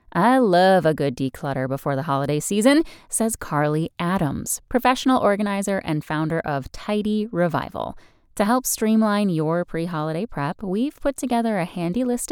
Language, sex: English, female